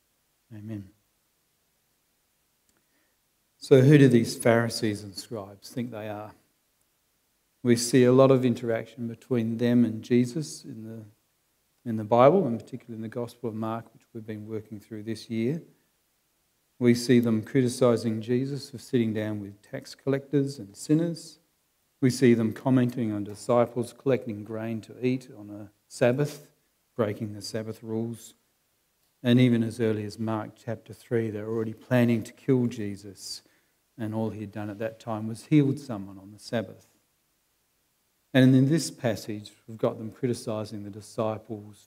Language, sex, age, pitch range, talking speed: English, male, 40-59, 105-120 Hz, 155 wpm